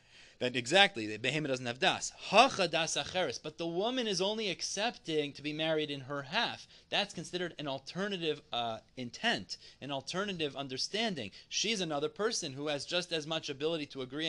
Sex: male